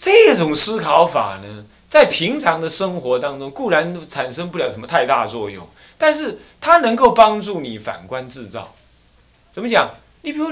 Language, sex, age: Chinese, male, 30-49